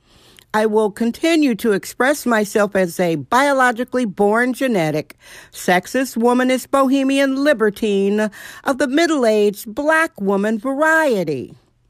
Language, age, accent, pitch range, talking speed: English, 60-79, American, 190-245 Hz, 105 wpm